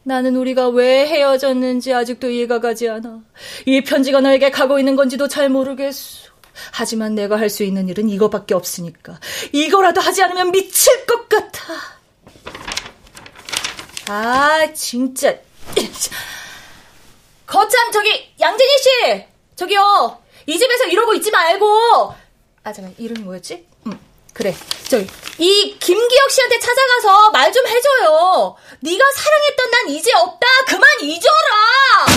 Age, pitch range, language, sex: 20-39, 260-390 Hz, Korean, female